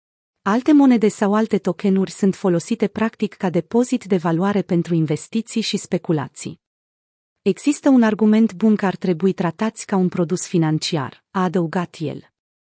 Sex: female